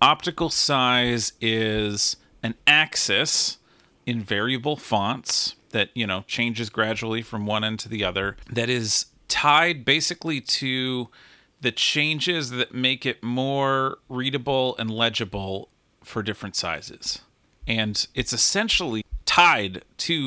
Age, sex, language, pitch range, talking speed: 40-59, male, English, 105-130 Hz, 120 wpm